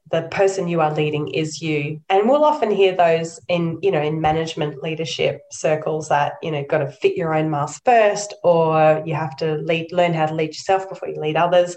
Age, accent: 20-39, Australian